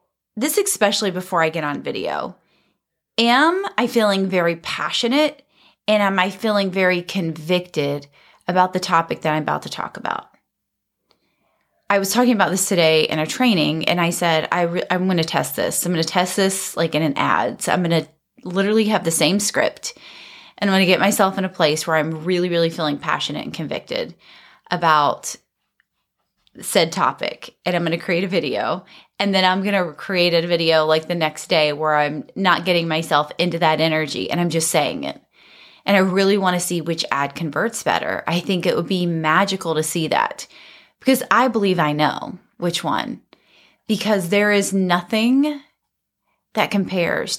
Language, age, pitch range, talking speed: English, 30-49, 165-205 Hz, 185 wpm